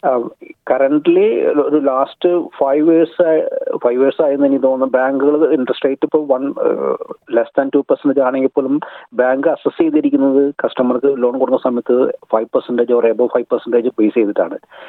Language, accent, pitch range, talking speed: Malayalam, native, 125-160 Hz, 140 wpm